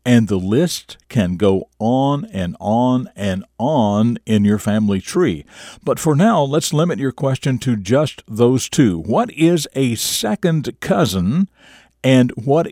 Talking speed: 150 wpm